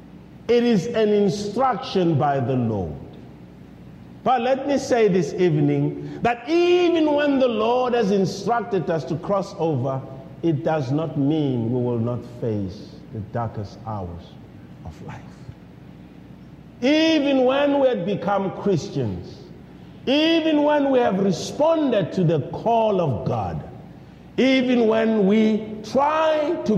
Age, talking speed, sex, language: 50-69, 130 wpm, male, English